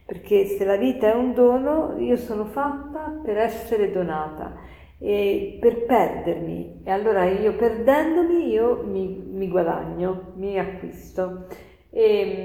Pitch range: 175-235 Hz